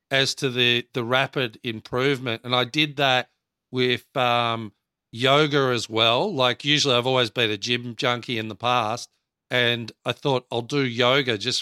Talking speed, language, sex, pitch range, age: 170 wpm, English, male, 120-140 Hz, 40-59